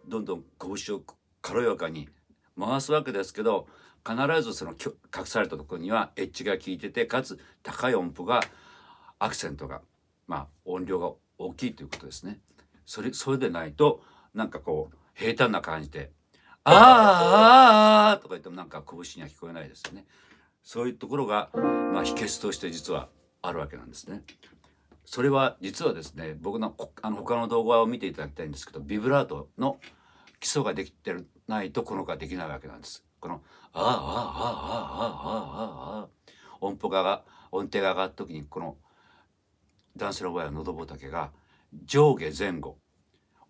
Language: Japanese